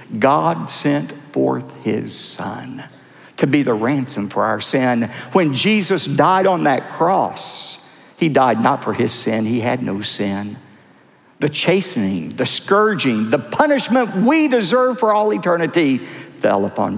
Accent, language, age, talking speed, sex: American, English, 50-69, 145 wpm, male